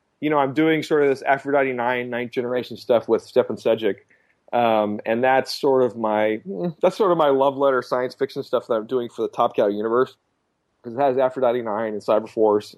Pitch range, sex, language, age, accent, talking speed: 110-135 Hz, male, English, 30-49, American, 215 wpm